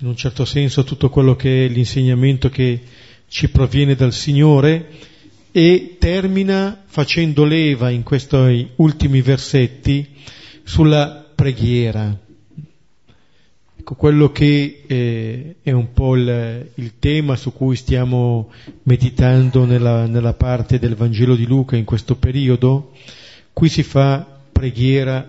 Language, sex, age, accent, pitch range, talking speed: Italian, male, 40-59, native, 120-150 Hz, 115 wpm